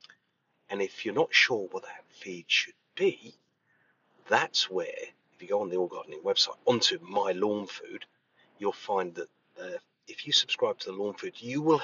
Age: 40-59